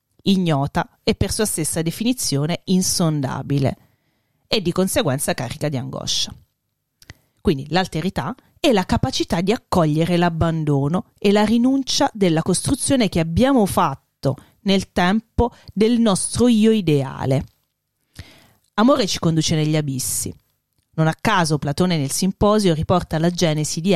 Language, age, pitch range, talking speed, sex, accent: Italian, 30-49, 150-195 Hz, 125 wpm, female, native